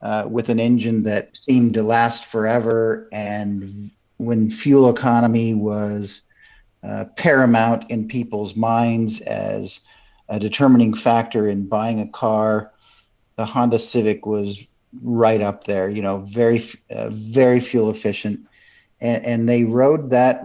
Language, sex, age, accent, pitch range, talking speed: English, male, 50-69, American, 110-125 Hz, 135 wpm